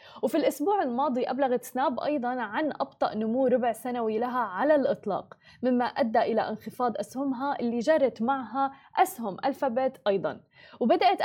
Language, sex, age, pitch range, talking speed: Arabic, female, 20-39, 235-290 Hz, 140 wpm